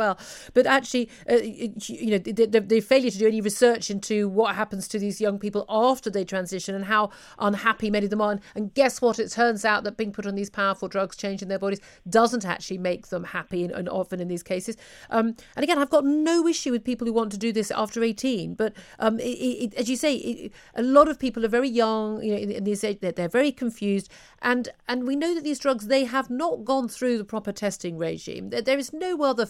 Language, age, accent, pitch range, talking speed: English, 40-59, British, 190-235 Hz, 245 wpm